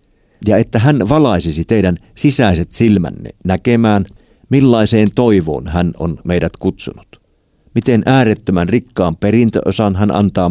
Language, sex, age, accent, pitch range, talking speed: Finnish, male, 50-69, native, 90-120 Hz, 115 wpm